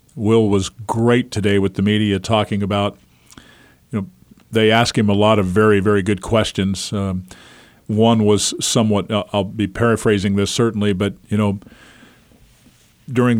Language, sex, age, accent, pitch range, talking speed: English, male, 50-69, American, 100-115 Hz, 150 wpm